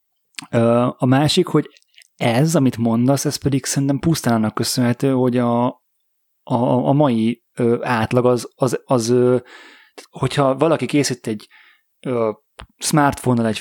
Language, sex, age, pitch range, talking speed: Hungarian, male, 30-49, 115-140 Hz, 110 wpm